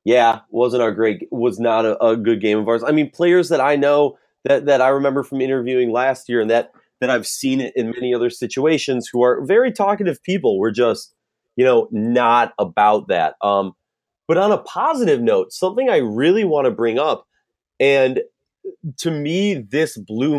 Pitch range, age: 115-145 Hz, 30-49